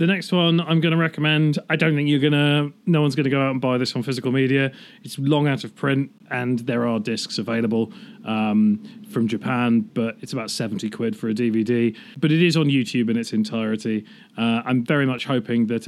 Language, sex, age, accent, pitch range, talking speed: English, male, 40-59, British, 115-145 Hz, 215 wpm